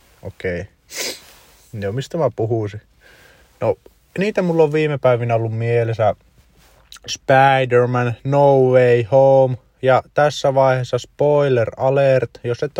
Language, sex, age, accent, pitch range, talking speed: Finnish, male, 30-49, native, 100-135 Hz, 115 wpm